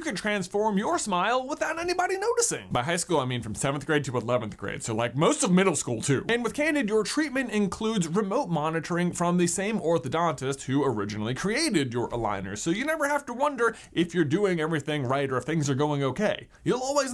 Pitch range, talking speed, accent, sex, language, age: 150-210 Hz, 215 wpm, American, male, English, 20-39